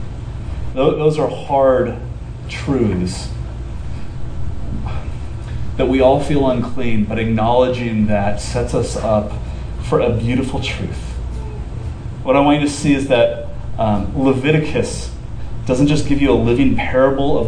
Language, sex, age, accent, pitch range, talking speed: English, male, 30-49, American, 110-145 Hz, 125 wpm